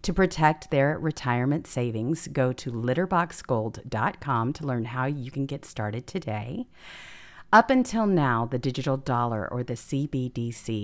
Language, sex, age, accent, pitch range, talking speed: English, female, 50-69, American, 115-155 Hz, 140 wpm